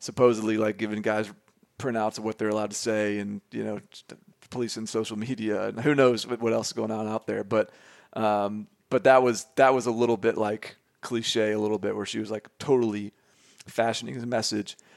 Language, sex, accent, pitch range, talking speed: English, male, American, 110-145 Hz, 205 wpm